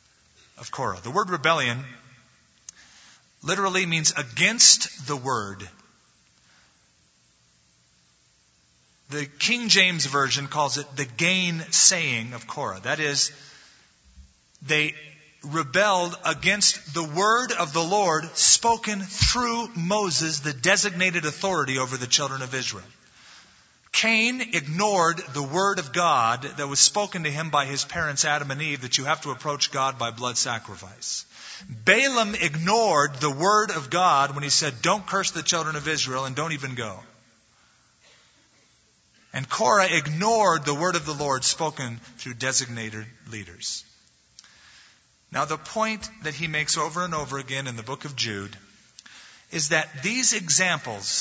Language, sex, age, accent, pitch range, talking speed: English, male, 30-49, American, 125-180 Hz, 135 wpm